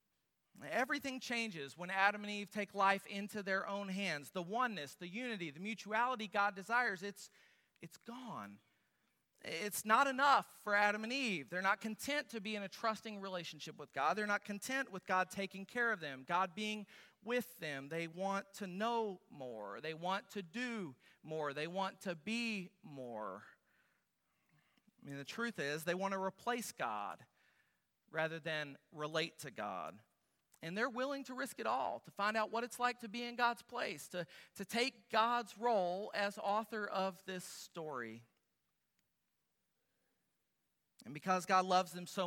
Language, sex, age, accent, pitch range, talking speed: English, male, 40-59, American, 180-225 Hz, 170 wpm